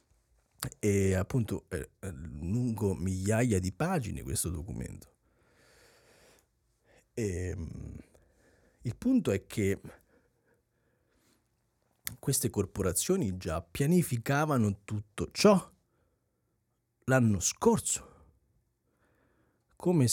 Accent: native